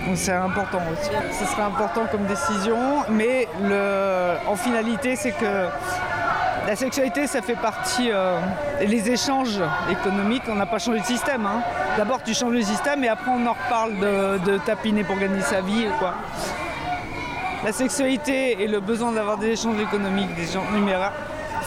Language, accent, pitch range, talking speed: French, French, 195-240 Hz, 170 wpm